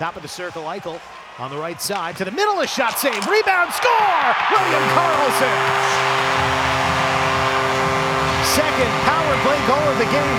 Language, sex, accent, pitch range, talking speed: English, male, American, 140-190 Hz, 155 wpm